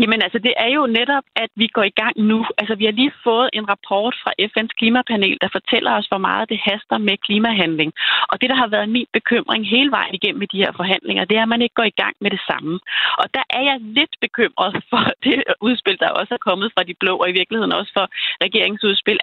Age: 30-49